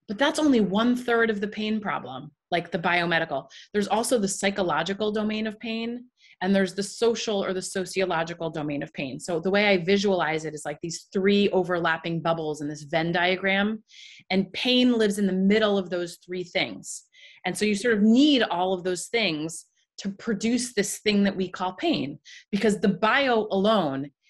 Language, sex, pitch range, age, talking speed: English, female, 180-220 Hz, 30-49, 190 wpm